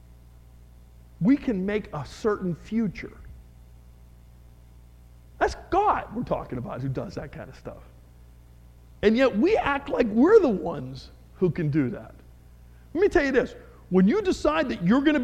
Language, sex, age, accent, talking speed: English, male, 50-69, American, 160 wpm